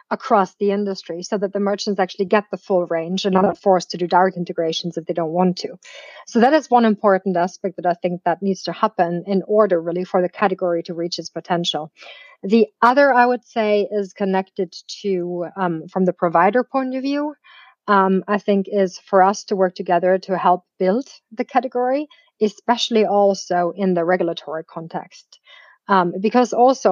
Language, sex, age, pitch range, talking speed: English, female, 30-49, 180-220 Hz, 190 wpm